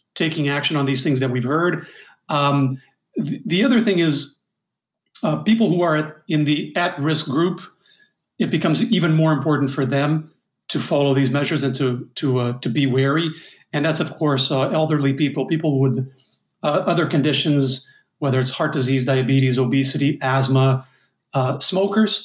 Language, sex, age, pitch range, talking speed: English, male, 40-59, 140-175 Hz, 165 wpm